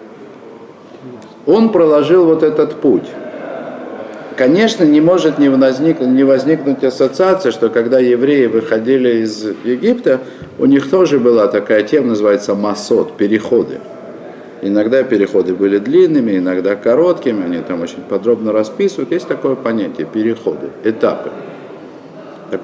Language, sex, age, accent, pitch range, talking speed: Russian, male, 50-69, native, 115-175 Hz, 115 wpm